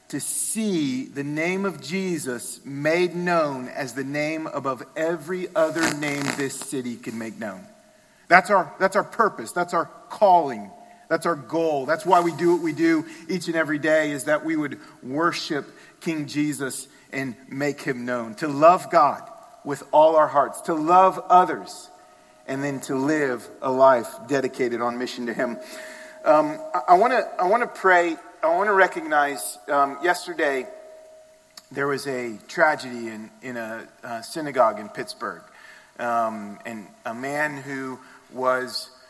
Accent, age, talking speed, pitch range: American, 40-59, 160 wpm, 125-170 Hz